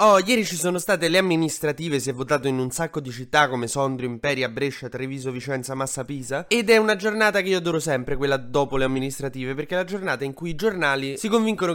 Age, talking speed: 20-39, 230 wpm